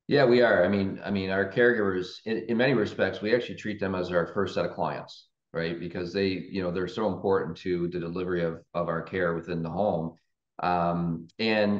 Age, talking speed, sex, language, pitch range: 40-59, 220 wpm, male, English, 85-100 Hz